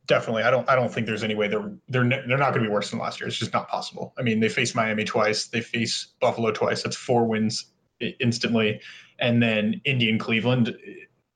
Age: 20-39